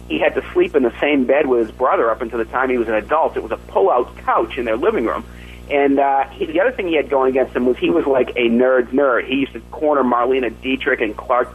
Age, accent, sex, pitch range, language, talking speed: 40-59, American, male, 115-185 Hz, English, 285 wpm